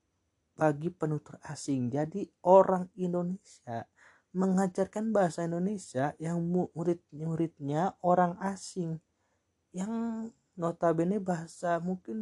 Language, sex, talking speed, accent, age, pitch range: Indonesian, male, 85 wpm, native, 30-49, 140-180 Hz